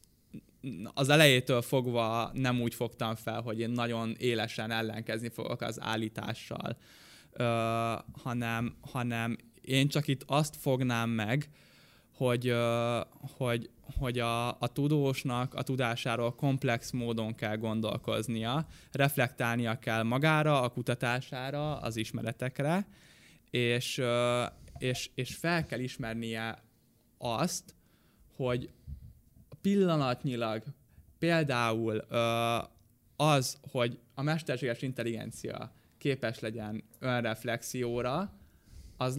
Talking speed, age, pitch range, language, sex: 90 wpm, 10-29, 115-140 Hz, Hungarian, male